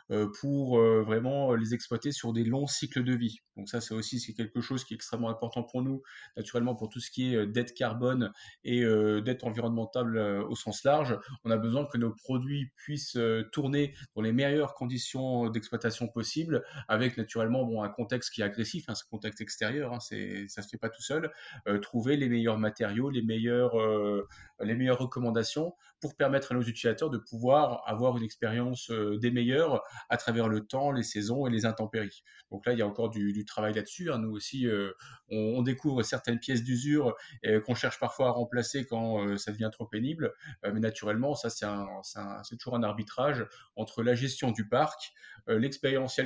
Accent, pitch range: French, 110-130 Hz